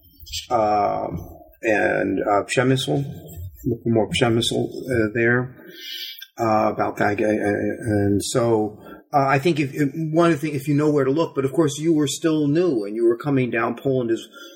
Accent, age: American, 40-59